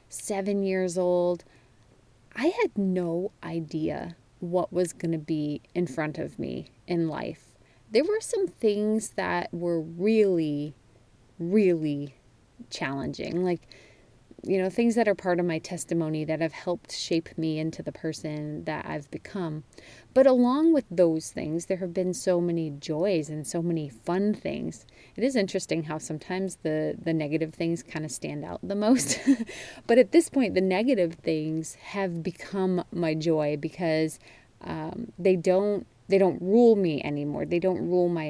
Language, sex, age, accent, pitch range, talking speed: English, female, 30-49, American, 155-190 Hz, 160 wpm